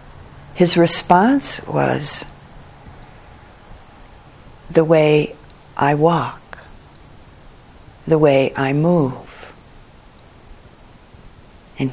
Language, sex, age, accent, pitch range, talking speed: English, female, 50-69, American, 130-170 Hz, 60 wpm